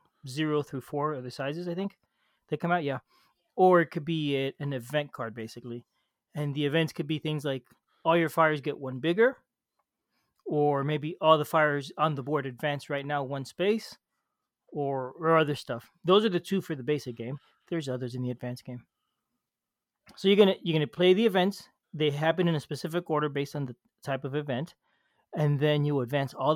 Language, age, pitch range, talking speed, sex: English, 30-49, 135-165 Hz, 200 wpm, male